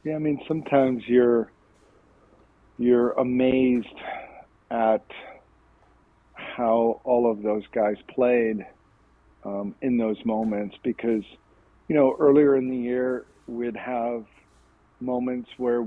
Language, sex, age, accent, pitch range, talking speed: English, male, 50-69, American, 110-130 Hz, 110 wpm